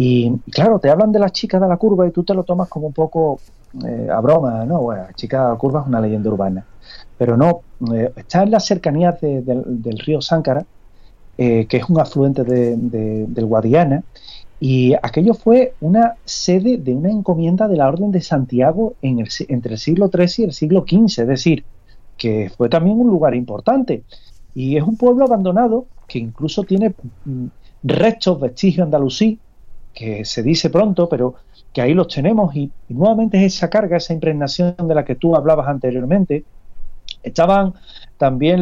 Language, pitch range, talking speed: Spanish, 120-180 Hz, 190 wpm